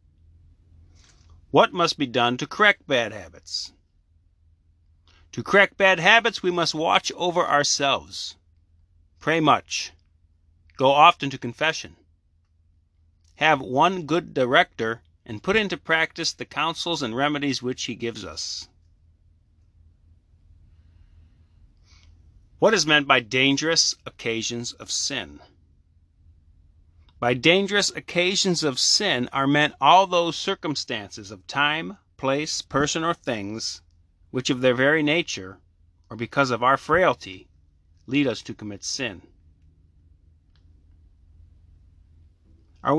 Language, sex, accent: English, male, American